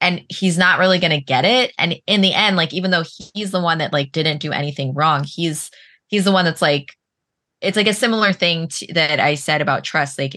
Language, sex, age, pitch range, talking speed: English, female, 20-39, 140-170 Hz, 235 wpm